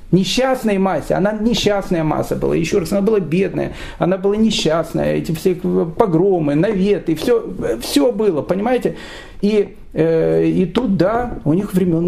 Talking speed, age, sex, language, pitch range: 150 wpm, 40-59, male, Russian, 160-225 Hz